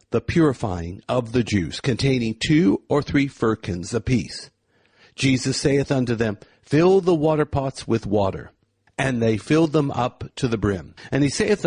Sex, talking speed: male, 160 wpm